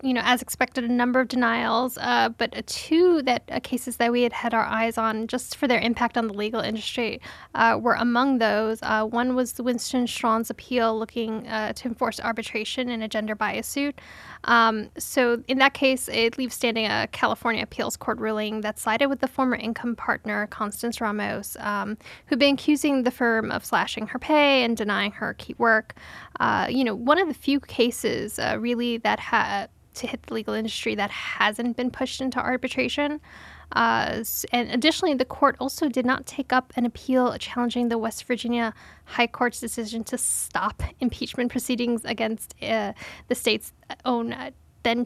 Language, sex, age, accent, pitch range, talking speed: English, female, 10-29, American, 225-260 Hz, 185 wpm